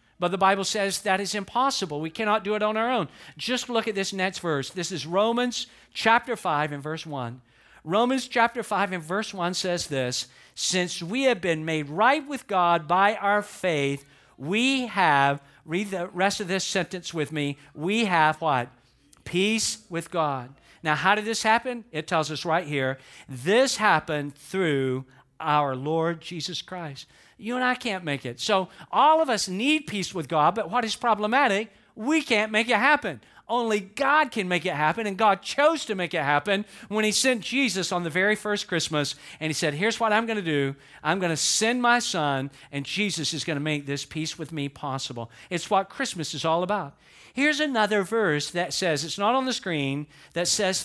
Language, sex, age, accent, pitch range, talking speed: English, male, 50-69, American, 150-215 Hz, 200 wpm